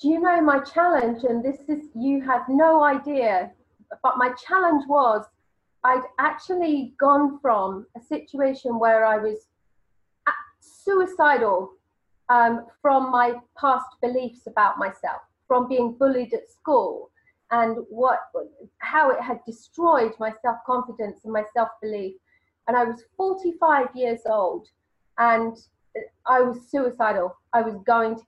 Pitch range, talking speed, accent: 230-290 Hz, 135 wpm, British